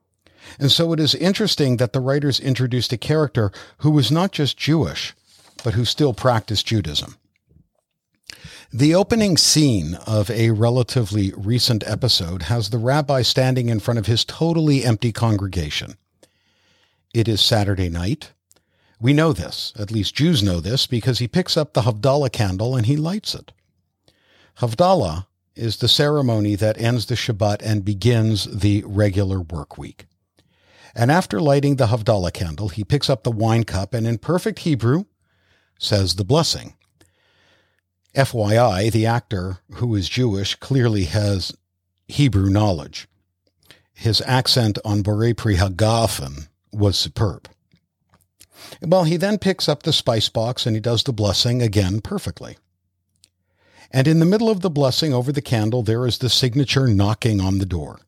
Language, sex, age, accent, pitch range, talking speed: English, male, 50-69, American, 100-135 Hz, 150 wpm